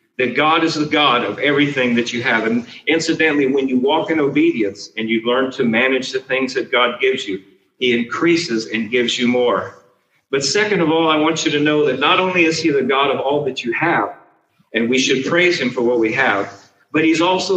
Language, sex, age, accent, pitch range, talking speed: English, male, 50-69, American, 125-165 Hz, 230 wpm